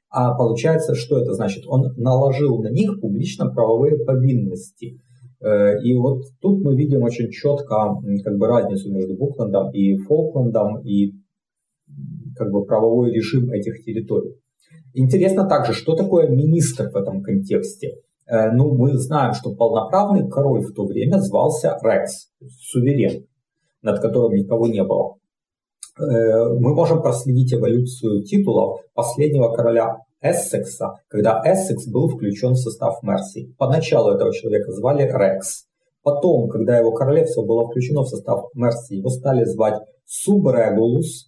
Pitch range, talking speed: 115-155 Hz, 130 wpm